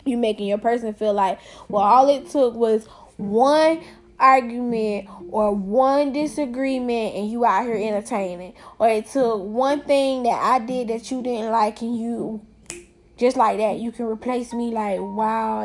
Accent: American